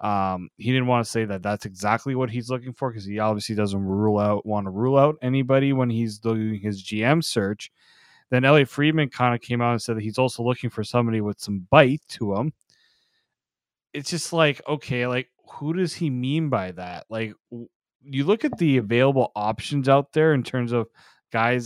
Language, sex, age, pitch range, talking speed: English, male, 20-39, 105-145 Hz, 210 wpm